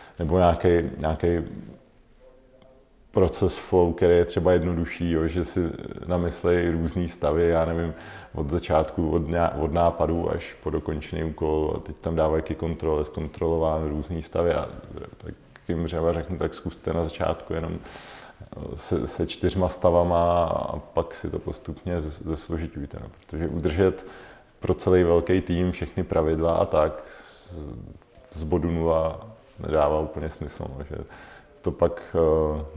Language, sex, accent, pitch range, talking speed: Czech, male, native, 80-90 Hz, 135 wpm